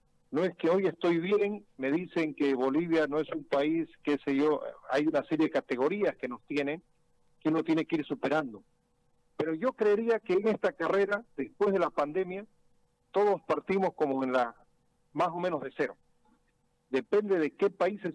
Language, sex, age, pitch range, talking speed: Spanish, male, 50-69, 150-205 Hz, 185 wpm